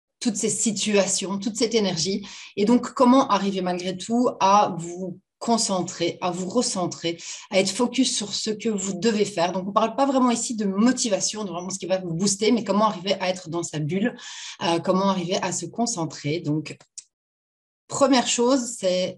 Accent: French